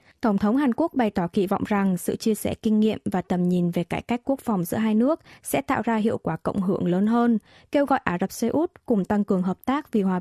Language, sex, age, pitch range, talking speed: Vietnamese, female, 20-39, 195-250 Hz, 275 wpm